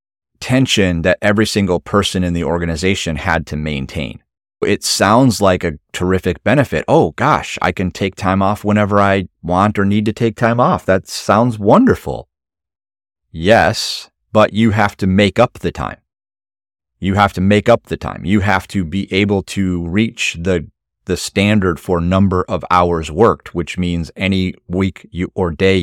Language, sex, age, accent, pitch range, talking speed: English, male, 30-49, American, 85-100 Hz, 170 wpm